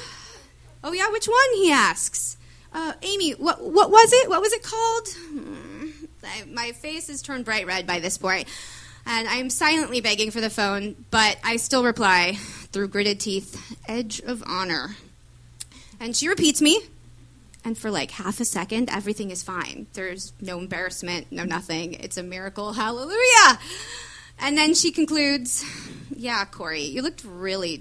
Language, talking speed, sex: English, 165 wpm, female